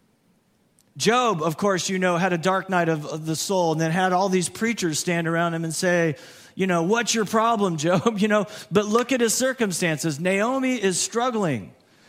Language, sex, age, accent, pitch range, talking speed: English, male, 40-59, American, 140-195 Hz, 200 wpm